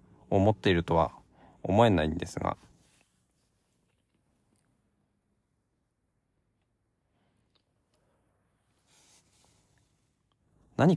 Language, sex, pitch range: Japanese, male, 95-140 Hz